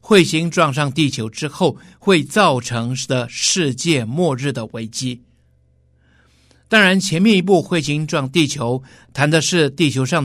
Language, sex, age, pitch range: Chinese, male, 60-79, 125-175 Hz